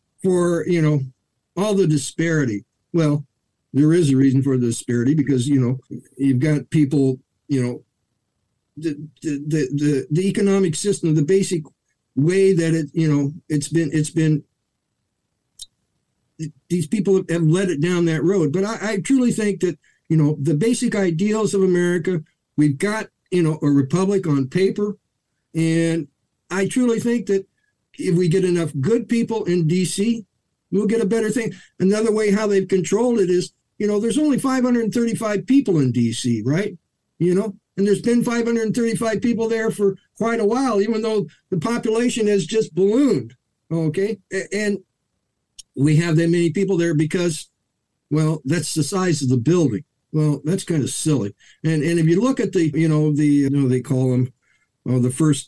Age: 50-69